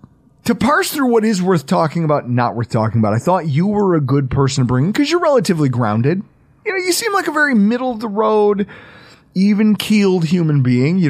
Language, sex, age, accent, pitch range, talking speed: English, male, 30-49, American, 130-195 Hz, 225 wpm